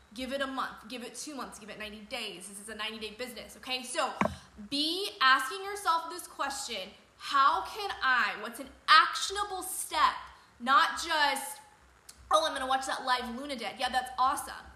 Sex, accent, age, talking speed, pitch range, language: female, American, 20-39, 185 wpm, 240-300 Hz, English